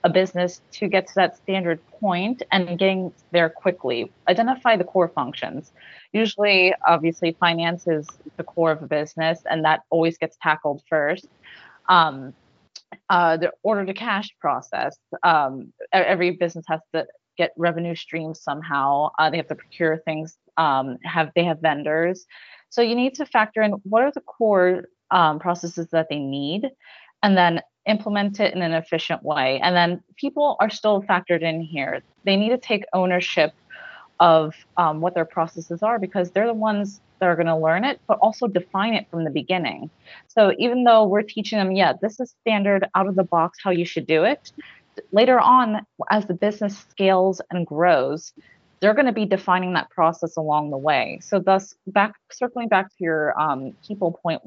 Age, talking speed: 30-49, 180 wpm